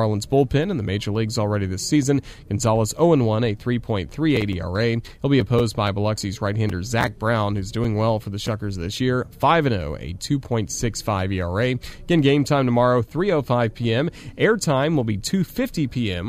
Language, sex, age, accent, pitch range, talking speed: English, male, 30-49, American, 100-135 Hz, 175 wpm